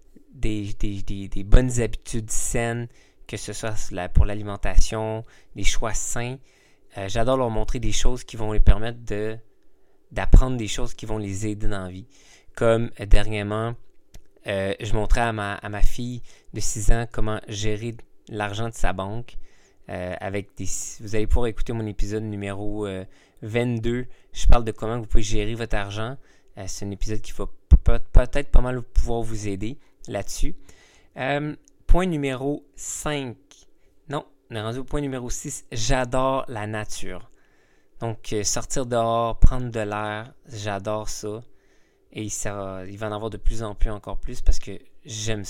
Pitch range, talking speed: 105-120 Hz, 160 wpm